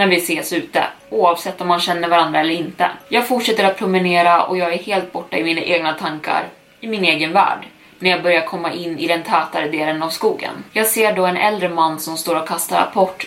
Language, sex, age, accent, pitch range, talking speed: Swedish, female, 20-39, native, 165-195 Hz, 225 wpm